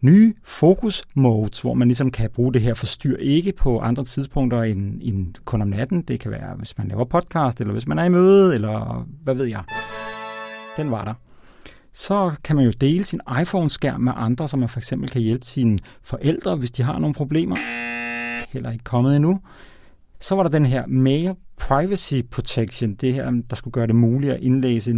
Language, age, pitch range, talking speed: Danish, 40-59, 115-150 Hz, 195 wpm